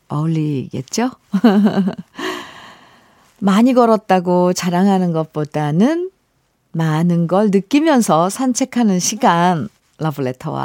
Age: 50-69